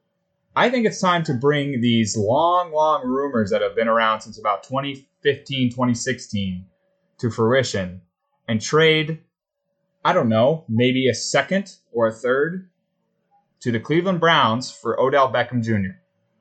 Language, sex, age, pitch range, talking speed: English, male, 20-39, 110-155 Hz, 145 wpm